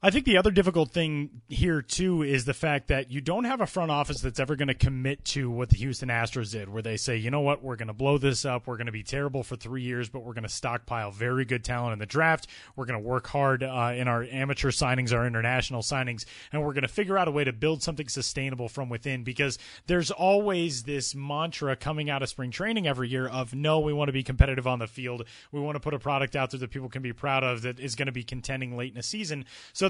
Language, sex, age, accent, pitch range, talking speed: English, male, 30-49, American, 125-165 Hz, 270 wpm